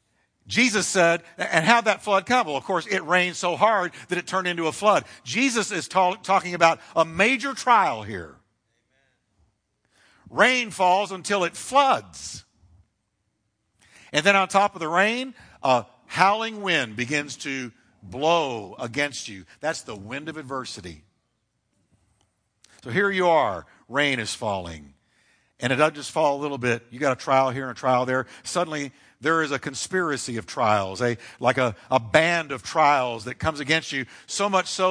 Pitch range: 110-180 Hz